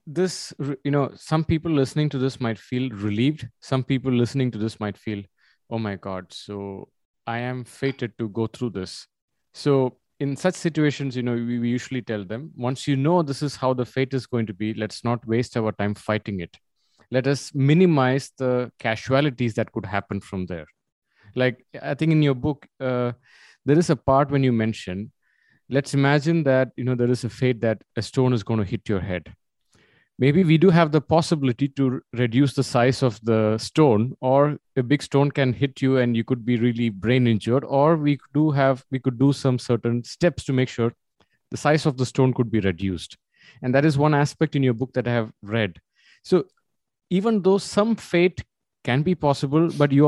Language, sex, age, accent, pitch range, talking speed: English, male, 30-49, Indian, 115-145 Hz, 205 wpm